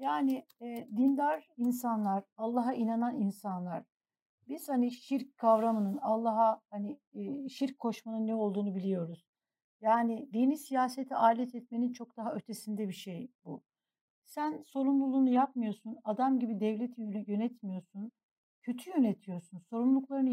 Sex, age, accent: female, 60-79, native